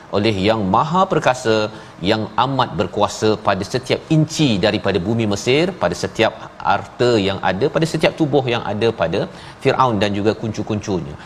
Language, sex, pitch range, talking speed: Malayalam, male, 100-125 Hz, 150 wpm